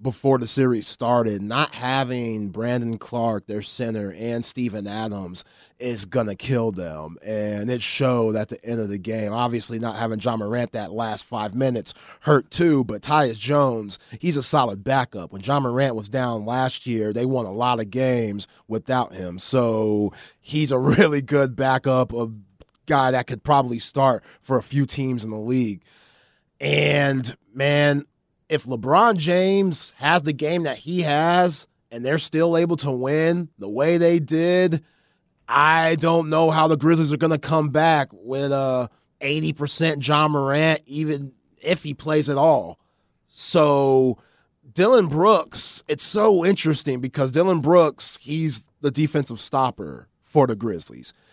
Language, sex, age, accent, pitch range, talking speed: English, male, 30-49, American, 115-155 Hz, 160 wpm